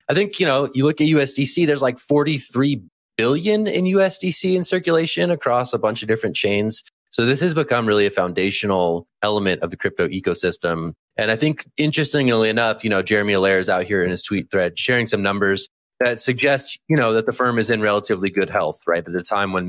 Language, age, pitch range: English, 30-49, 95-130 Hz